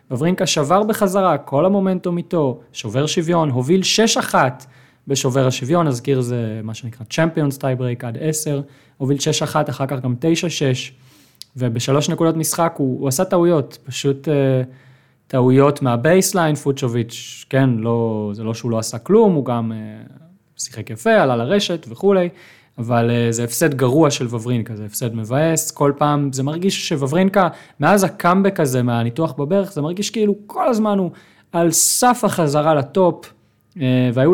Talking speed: 150 wpm